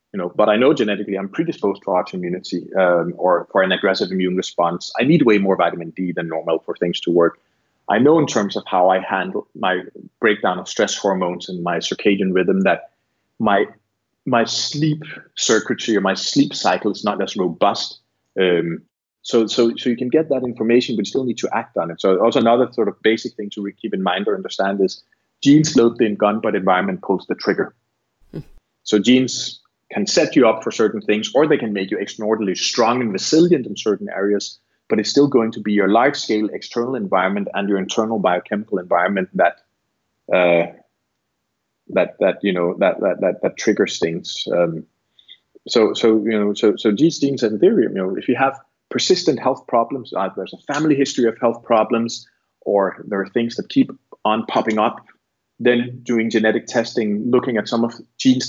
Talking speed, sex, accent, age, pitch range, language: 195 wpm, male, Danish, 30-49, 95-125 Hz, Swedish